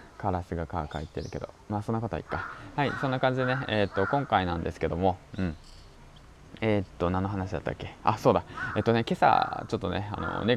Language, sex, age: Japanese, male, 20-39